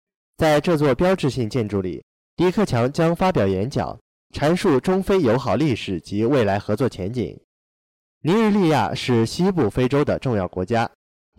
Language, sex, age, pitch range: Chinese, male, 20-39, 105-165 Hz